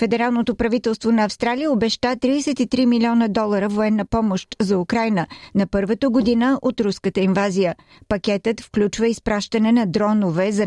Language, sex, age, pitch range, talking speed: Bulgarian, female, 50-69, 195-235 Hz, 135 wpm